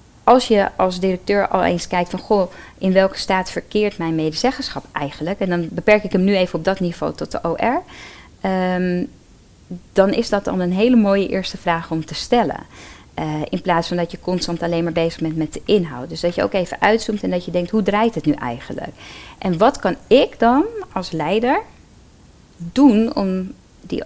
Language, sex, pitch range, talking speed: Dutch, female, 165-220 Hz, 200 wpm